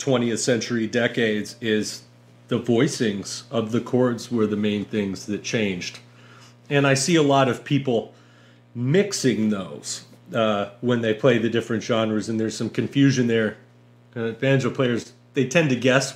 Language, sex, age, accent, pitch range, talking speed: English, male, 40-59, American, 85-120 Hz, 160 wpm